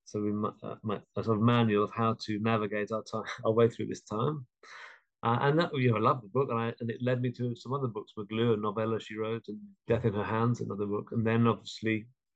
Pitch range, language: 105-120 Hz, English